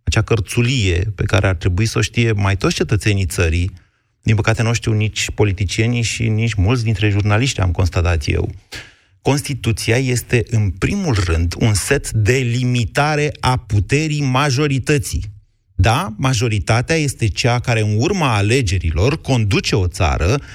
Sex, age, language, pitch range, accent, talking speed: male, 30-49, Romanian, 105-135 Hz, native, 150 wpm